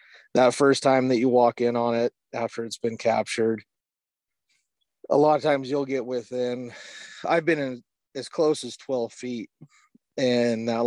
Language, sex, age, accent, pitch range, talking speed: English, male, 30-49, American, 110-125 Hz, 165 wpm